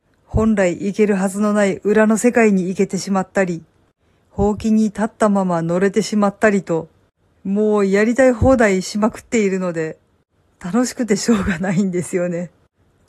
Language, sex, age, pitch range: Japanese, female, 50-69, 180-225 Hz